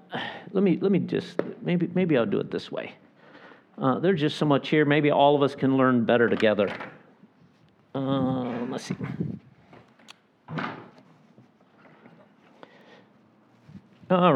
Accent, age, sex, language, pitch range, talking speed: American, 50-69, male, English, 150-210 Hz, 125 wpm